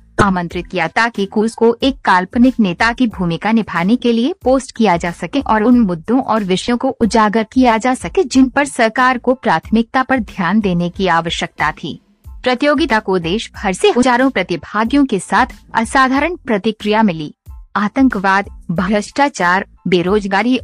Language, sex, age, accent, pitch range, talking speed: Hindi, female, 50-69, native, 190-255 Hz, 150 wpm